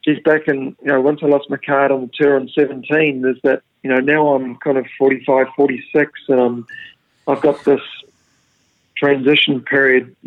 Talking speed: 195 wpm